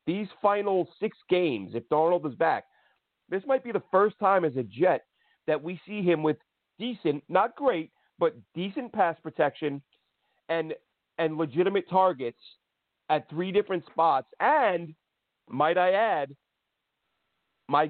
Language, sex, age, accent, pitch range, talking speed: English, male, 40-59, American, 155-195 Hz, 140 wpm